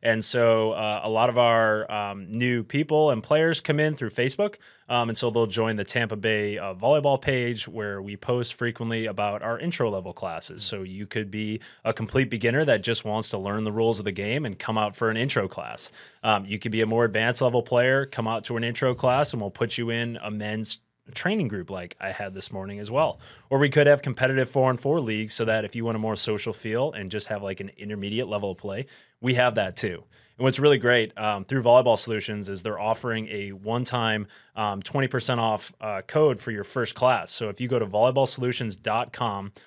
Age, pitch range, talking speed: 20-39, 110-130 Hz, 220 wpm